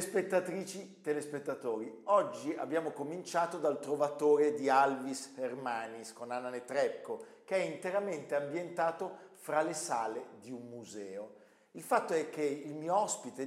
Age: 50-69